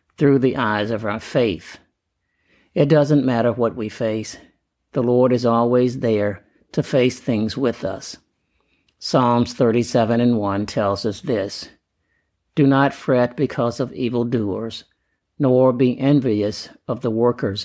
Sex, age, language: male, 50-69, English